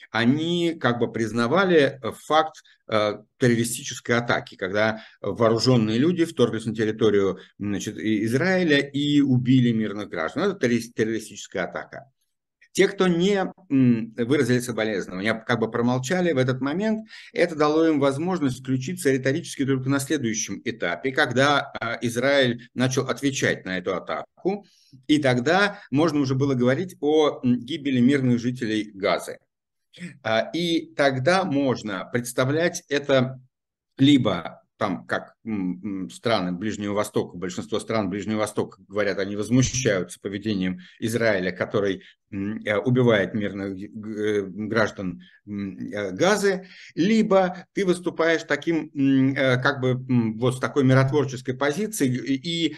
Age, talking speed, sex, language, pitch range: 60-79, 105 wpm, male, Russian, 110-150 Hz